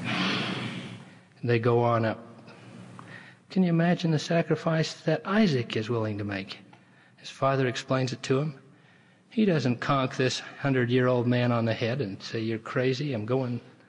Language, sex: English, male